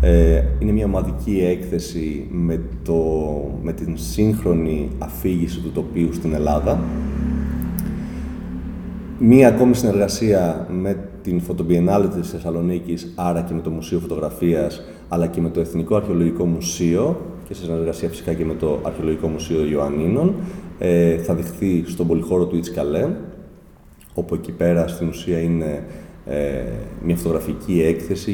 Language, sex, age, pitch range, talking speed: Greek, male, 30-49, 80-90 Hz, 125 wpm